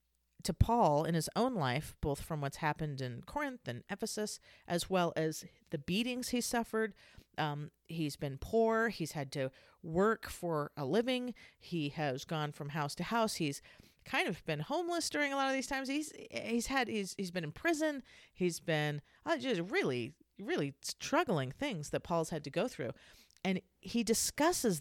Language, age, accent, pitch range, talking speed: English, 40-59, American, 150-235 Hz, 180 wpm